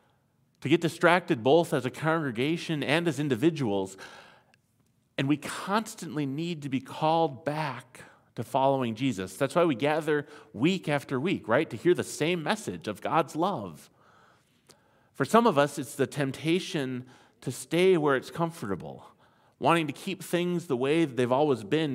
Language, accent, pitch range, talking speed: English, American, 130-170 Hz, 160 wpm